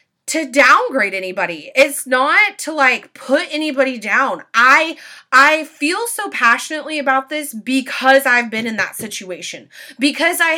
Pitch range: 210-280 Hz